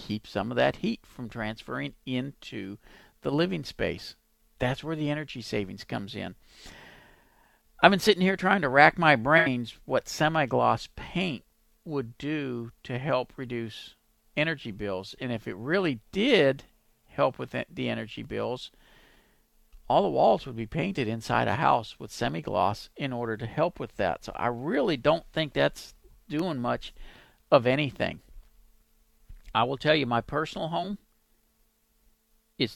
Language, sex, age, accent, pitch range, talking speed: English, male, 50-69, American, 110-150 Hz, 150 wpm